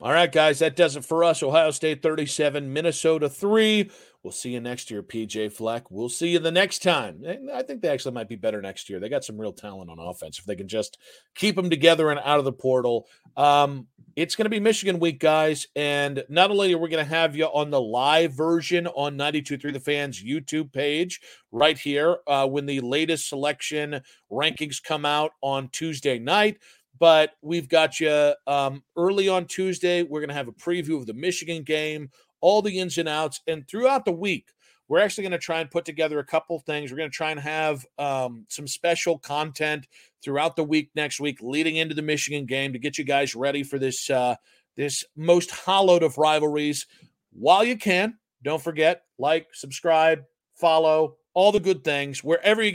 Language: English